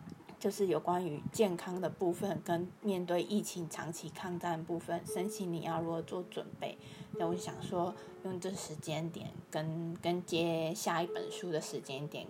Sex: female